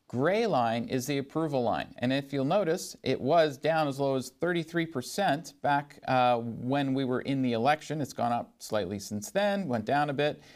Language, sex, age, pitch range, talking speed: English, male, 40-59, 120-155 Hz, 200 wpm